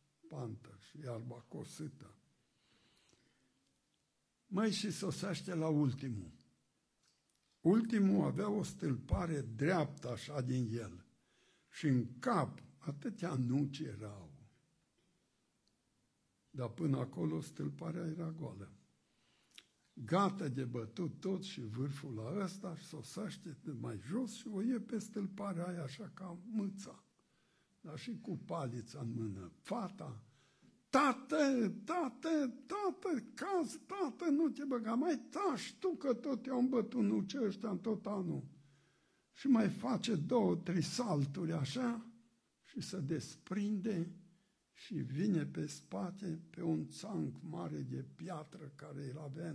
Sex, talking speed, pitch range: male, 120 wpm, 140-215 Hz